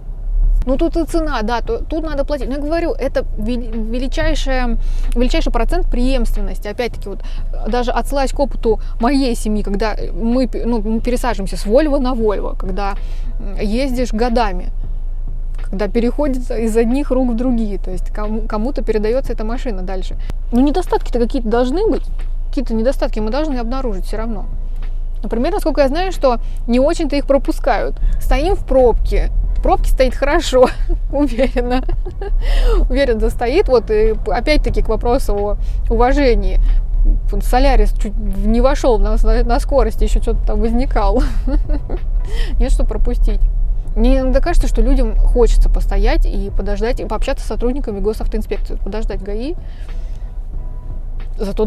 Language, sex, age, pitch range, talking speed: Russian, female, 20-39, 215-270 Hz, 135 wpm